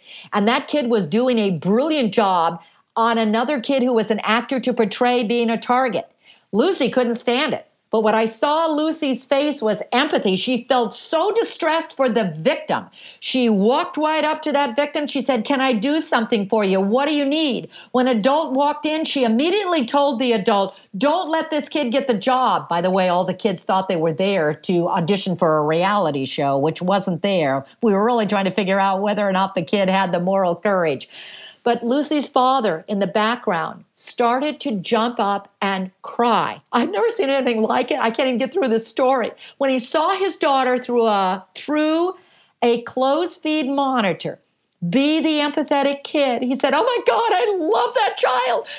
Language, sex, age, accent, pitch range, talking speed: English, female, 50-69, American, 215-305 Hz, 195 wpm